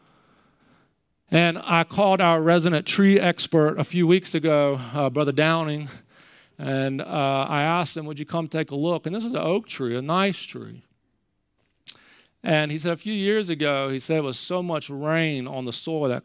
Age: 40-59